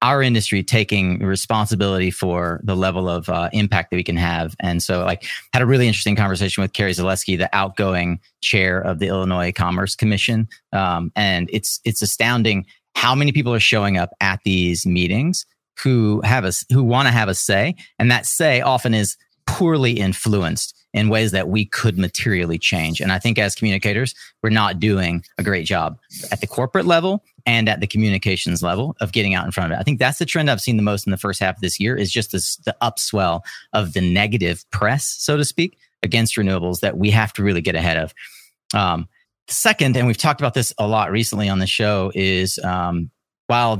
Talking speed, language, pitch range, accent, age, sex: 205 wpm, English, 95-115 Hz, American, 30-49, male